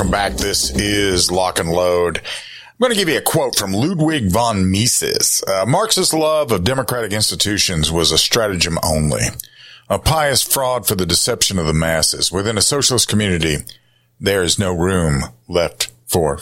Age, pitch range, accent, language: 50-69, 70-115 Hz, American, English